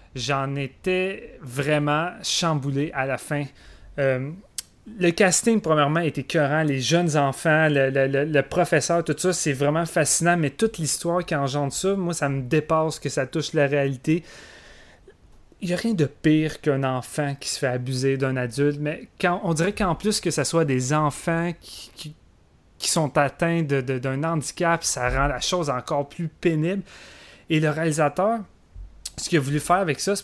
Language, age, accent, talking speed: French, 30-49, Canadian, 185 wpm